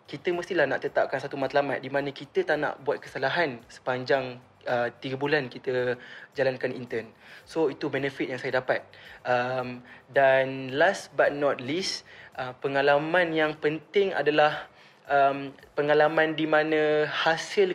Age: 20-39